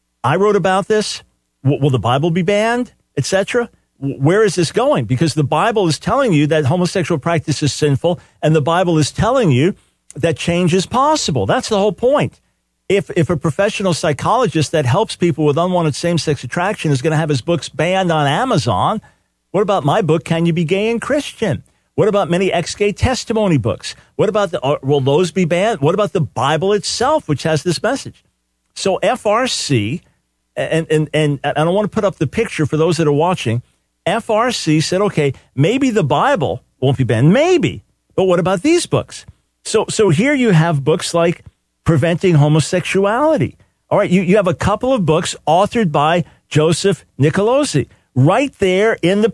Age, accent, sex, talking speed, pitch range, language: 50-69, American, male, 190 wpm, 150-200 Hz, English